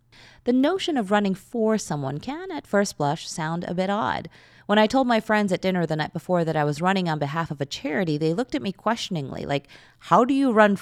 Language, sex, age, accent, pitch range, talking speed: English, female, 30-49, American, 150-215 Hz, 240 wpm